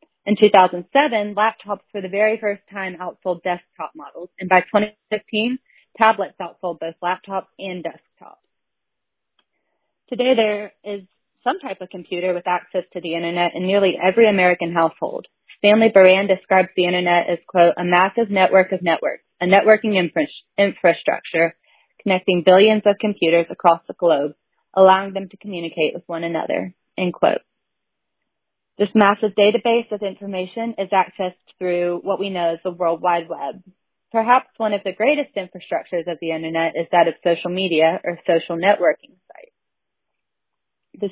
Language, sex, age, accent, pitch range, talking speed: English, female, 30-49, American, 175-210 Hz, 150 wpm